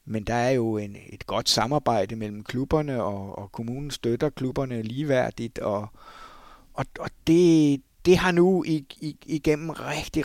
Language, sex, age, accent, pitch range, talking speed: Danish, male, 60-79, native, 110-150 Hz, 140 wpm